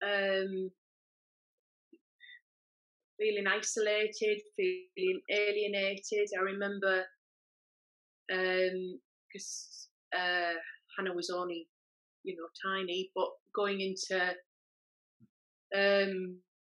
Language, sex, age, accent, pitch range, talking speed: English, female, 30-49, British, 185-215 Hz, 70 wpm